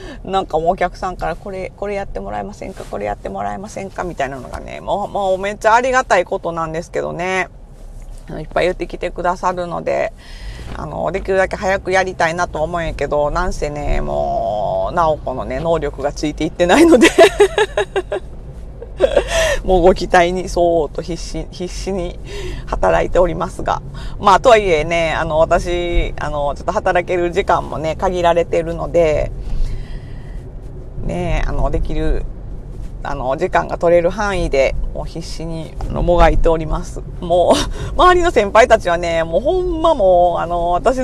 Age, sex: 40-59, female